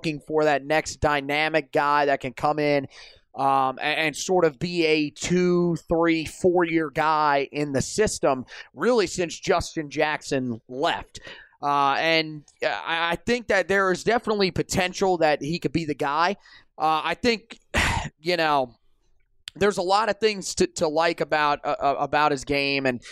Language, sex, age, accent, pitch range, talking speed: English, male, 30-49, American, 145-180 Hz, 165 wpm